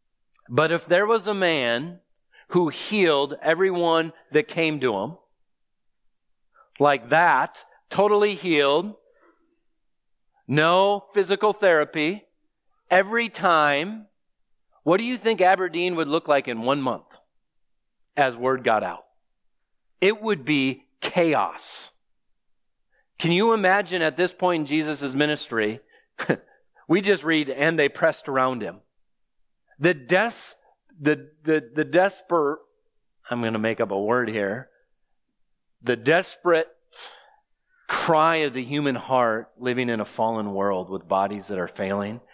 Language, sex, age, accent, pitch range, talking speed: English, male, 40-59, American, 130-185 Hz, 125 wpm